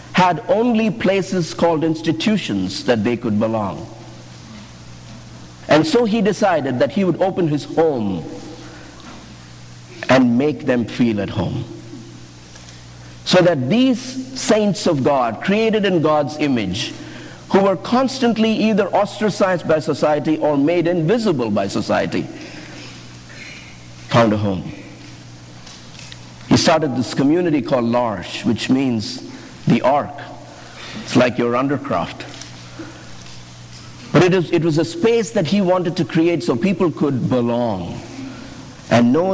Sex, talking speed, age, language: male, 125 wpm, 50-69, English